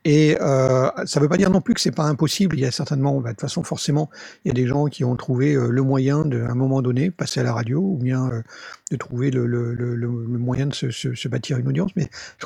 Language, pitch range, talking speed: French, 130-160 Hz, 290 wpm